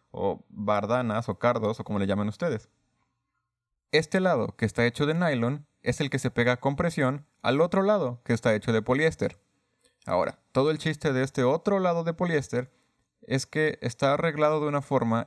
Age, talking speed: 30-49, 190 wpm